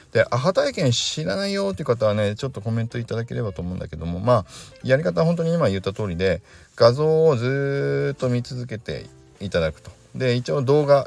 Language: Japanese